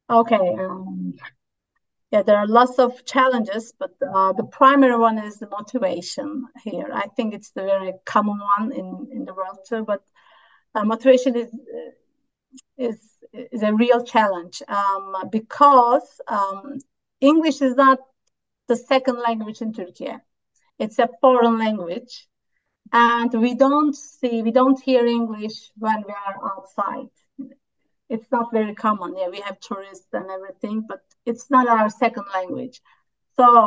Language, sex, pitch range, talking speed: English, female, 205-250 Hz, 145 wpm